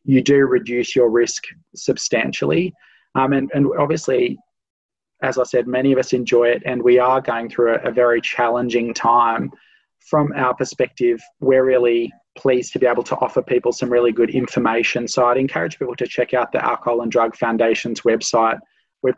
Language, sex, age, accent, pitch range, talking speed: English, male, 20-39, Australian, 120-130 Hz, 180 wpm